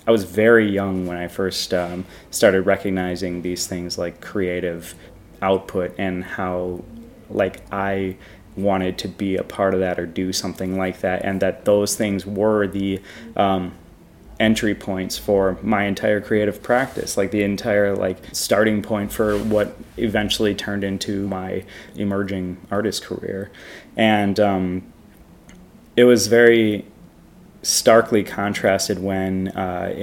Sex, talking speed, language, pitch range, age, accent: male, 140 wpm, English, 90-105 Hz, 20-39, American